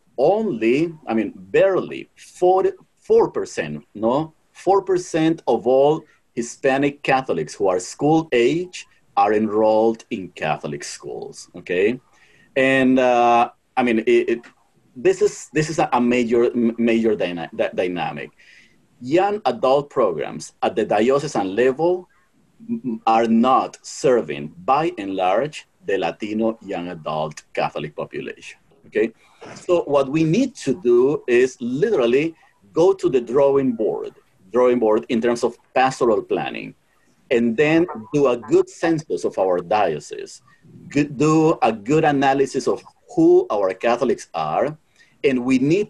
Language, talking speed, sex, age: English, 130 wpm, male, 40-59